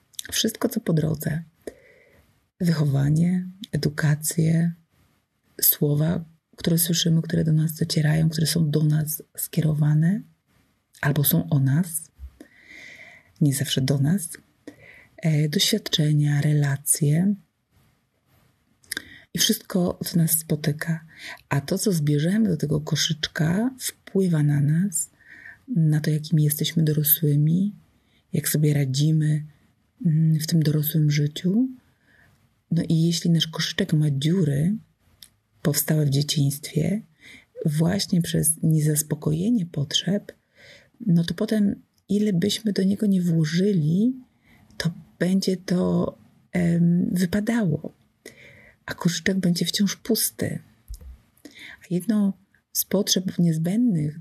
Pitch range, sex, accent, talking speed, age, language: 150-185 Hz, female, native, 105 wpm, 30-49, Polish